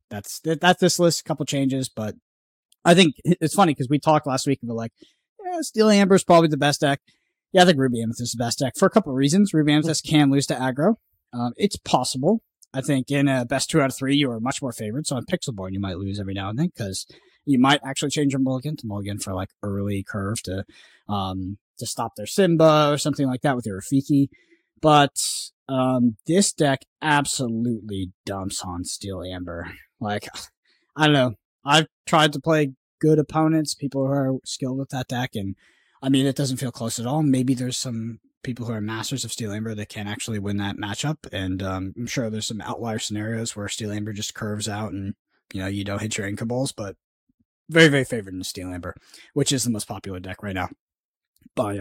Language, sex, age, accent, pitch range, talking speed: English, male, 20-39, American, 105-150 Hz, 220 wpm